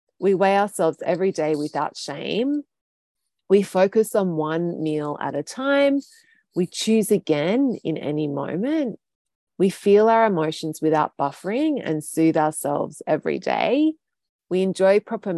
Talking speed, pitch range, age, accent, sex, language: 135 wpm, 160-215 Hz, 30-49, Australian, female, English